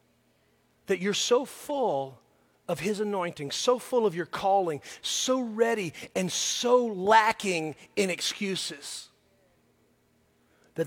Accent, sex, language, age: American, male, English, 40-59